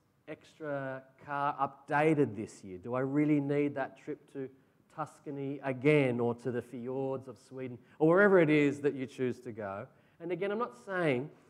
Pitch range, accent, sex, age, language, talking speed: 120-145 Hz, Australian, male, 30-49, English, 175 wpm